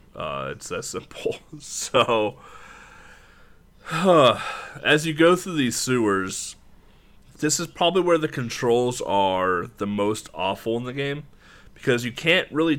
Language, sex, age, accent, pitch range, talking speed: English, male, 20-39, American, 100-140 Hz, 130 wpm